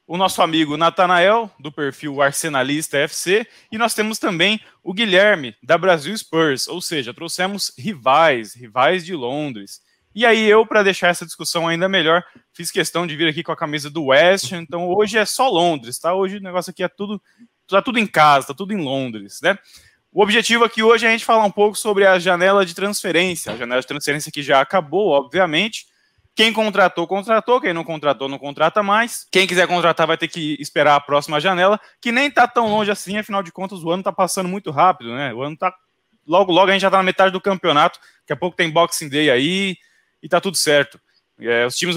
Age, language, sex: 20-39, Portuguese, male